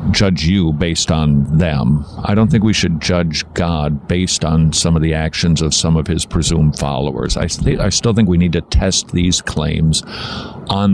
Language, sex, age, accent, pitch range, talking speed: English, male, 50-69, American, 80-100 Hz, 190 wpm